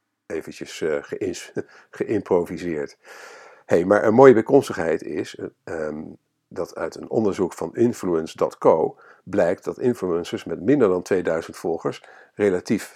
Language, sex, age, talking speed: Dutch, male, 50-69, 115 wpm